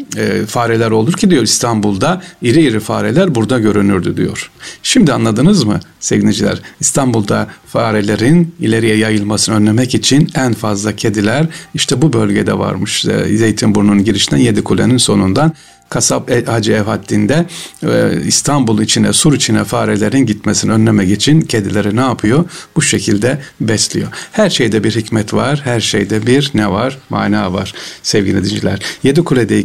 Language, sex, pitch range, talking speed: Turkish, male, 105-130 Hz, 130 wpm